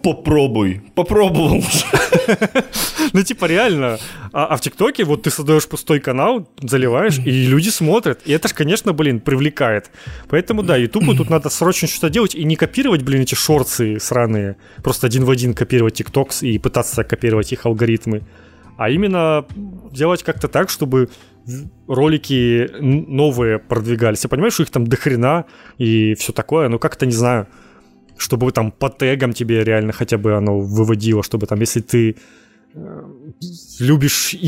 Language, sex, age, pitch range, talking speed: Ukrainian, male, 20-39, 110-150 Hz, 150 wpm